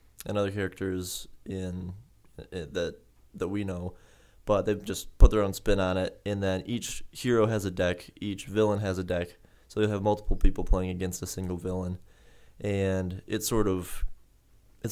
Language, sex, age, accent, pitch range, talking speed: English, male, 20-39, American, 90-105 Hz, 180 wpm